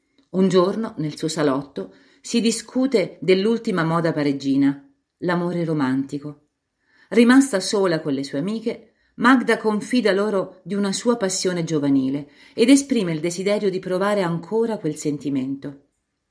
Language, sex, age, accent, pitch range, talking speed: Italian, female, 40-59, native, 145-205 Hz, 130 wpm